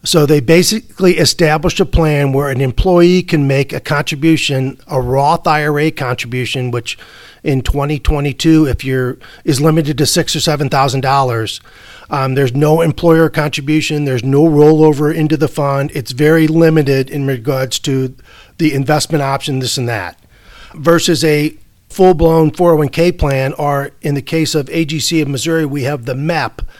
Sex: male